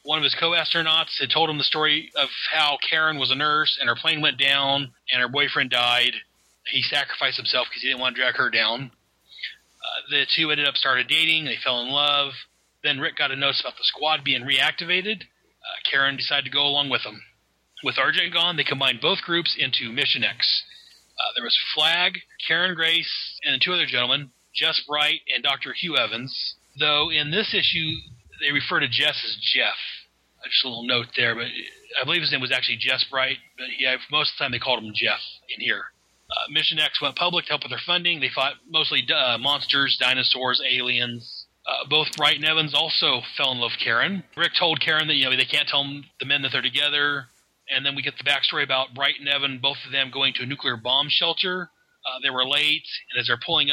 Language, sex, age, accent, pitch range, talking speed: English, male, 30-49, American, 130-155 Hz, 220 wpm